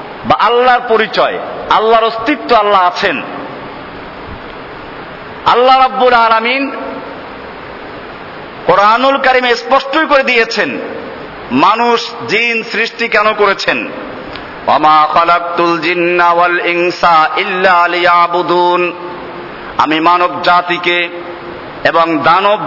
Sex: male